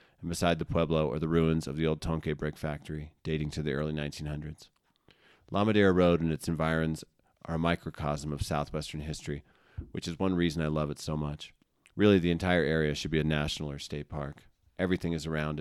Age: 30-49